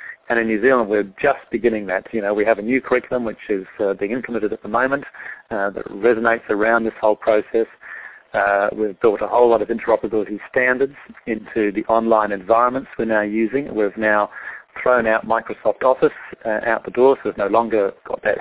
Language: English